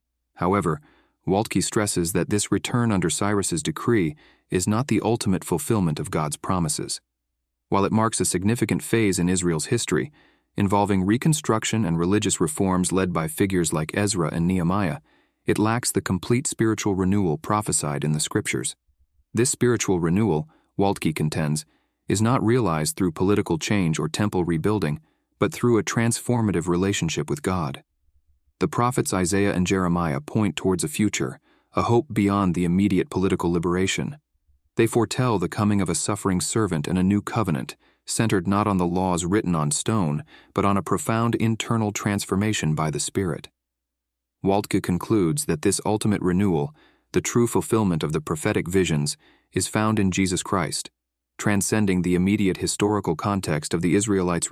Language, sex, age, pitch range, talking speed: English, male, 30-49, 85-105 Hz, 155 wpm